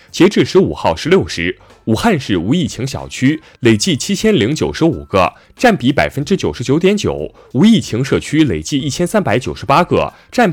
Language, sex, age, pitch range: Chinese, male, 30-49, 125-200 Hz